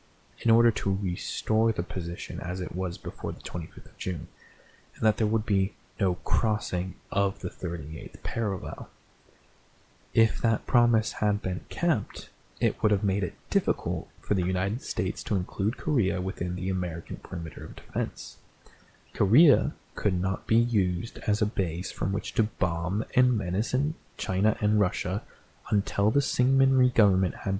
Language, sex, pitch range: English, male, 95-115 Hz